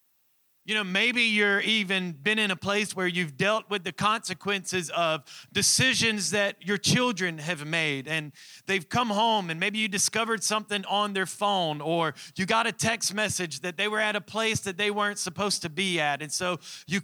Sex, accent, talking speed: male, American, 195 wpm